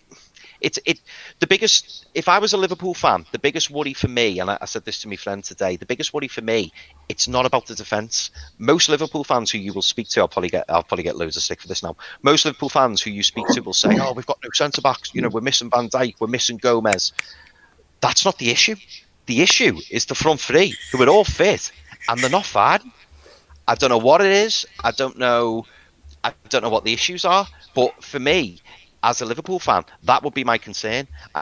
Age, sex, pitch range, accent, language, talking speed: 30-49, male, 100-140 Hz, British, English, 235 wpm